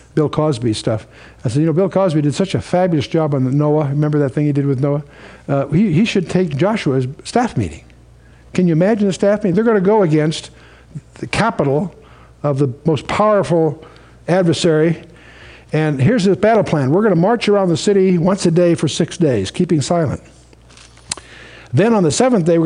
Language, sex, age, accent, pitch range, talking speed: English, male, 60-79, American, 145-190 Hz, 200 wpm